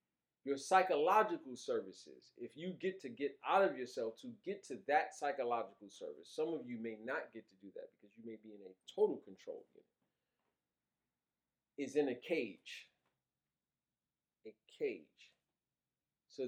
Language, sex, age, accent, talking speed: English, male, 40-59, American, 155 wpm